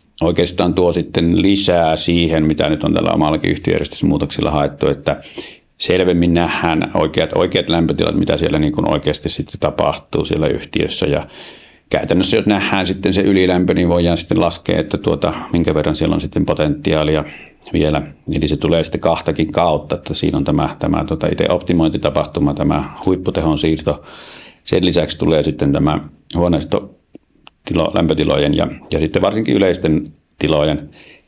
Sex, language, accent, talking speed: male, Finnish, native, 145 wpm